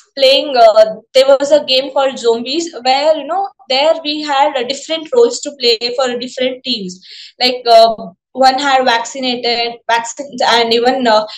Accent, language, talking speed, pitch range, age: native, Kannada, 175 wpm, 240-295 Hz, 20-39